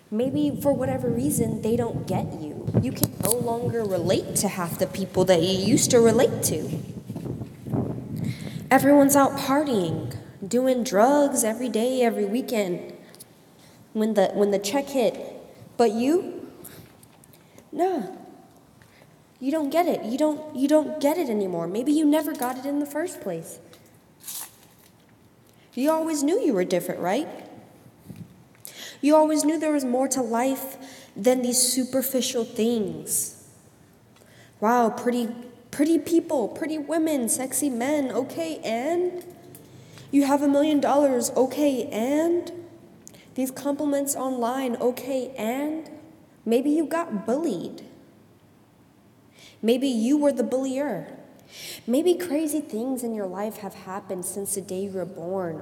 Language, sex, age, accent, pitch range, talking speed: English, female, 10-29, American, 215-290 Hz, 135 wpm